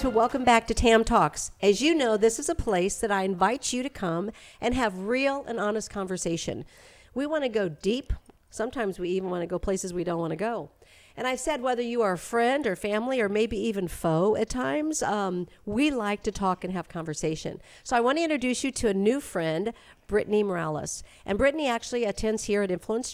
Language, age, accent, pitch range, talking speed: English, 50-69, American, 180-230 Hz, 220 wpm